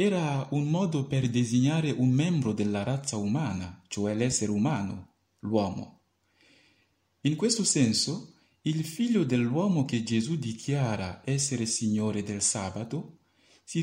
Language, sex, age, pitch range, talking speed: Italian, male, 50-69, 105-160 Hz, 120 wpm